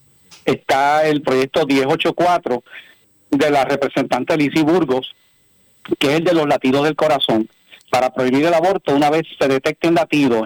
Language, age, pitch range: Spanish, 40-59, 130-165 Hz